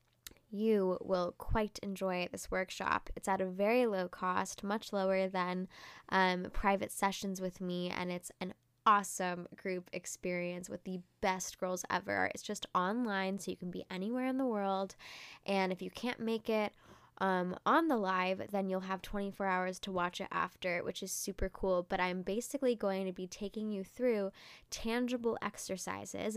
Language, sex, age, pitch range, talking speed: English, female, 10-29, 180-205 Hz, 175 wpm